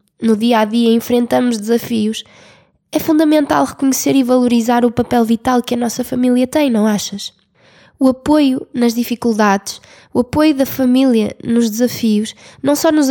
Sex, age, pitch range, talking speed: female, 20-39, 230-270 Hz, 155 wpm